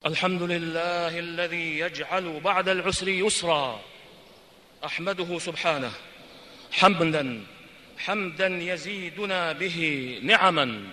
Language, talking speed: Arabic, 75 wpm